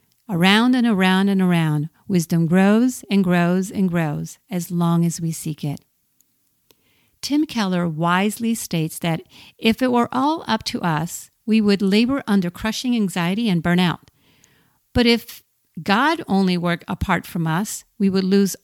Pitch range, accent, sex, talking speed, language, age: 170-220 Hz, American, female, 155 wpm, English, 50-69